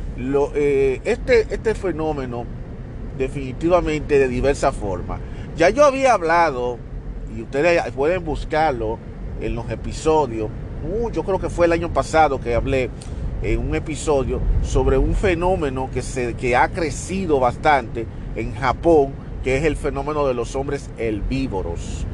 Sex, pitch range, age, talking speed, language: male, 125-170 Hz, 40-59, 140 wpm, Spanish